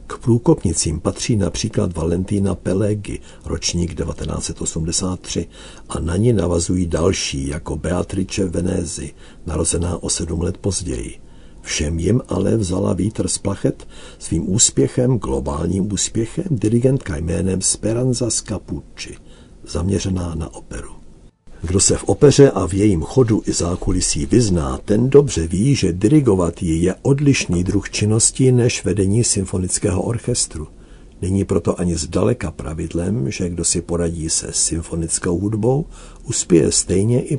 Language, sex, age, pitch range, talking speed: Czech, male, 60-79, 85-105 Hz, 125 wpm